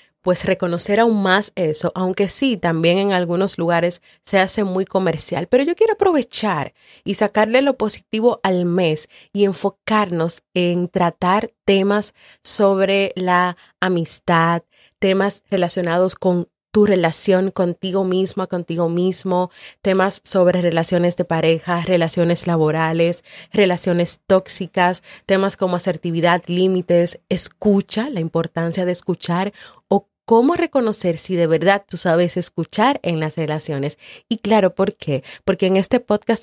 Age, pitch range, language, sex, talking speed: 30-49, 170-195 Hz, Spanish, female, 130 wpm